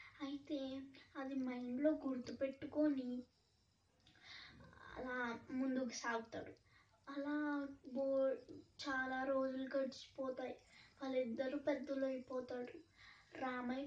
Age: 20-39